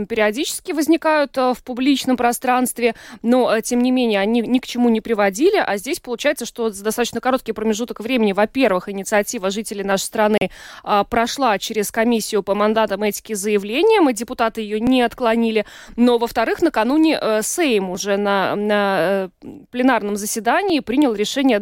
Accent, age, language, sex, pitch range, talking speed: native, 20-39, Russian, female, 215-270 Hz, 160 wpm